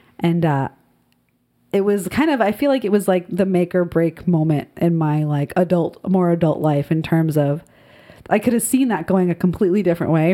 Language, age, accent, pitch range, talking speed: English, 30-49, American, 165-200 Hz, 215 wpm